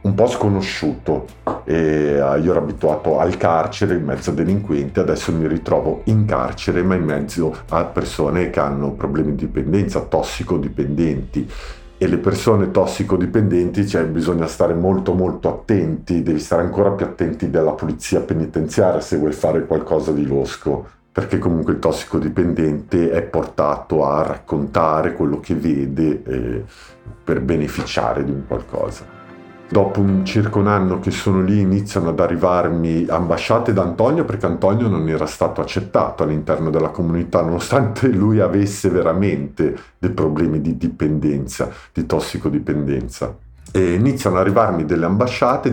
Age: 50-69